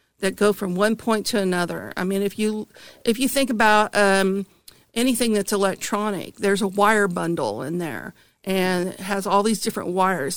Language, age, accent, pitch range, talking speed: English, 50-69, American, 190-220 Hz, 185 wpm